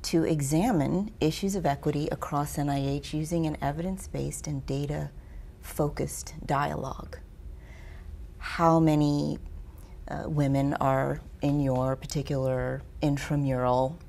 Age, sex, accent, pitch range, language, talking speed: 30-49, female, American, 135-175 Hz, English, 95 wpm